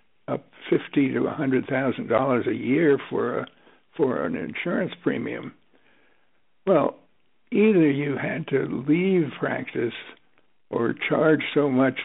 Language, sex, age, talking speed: English, male, 60-79, 130 wpm